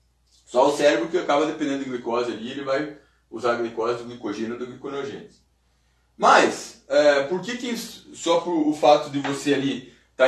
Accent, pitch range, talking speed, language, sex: Brazilian, 115-175 Hz, 185 wpm, Portuguese, male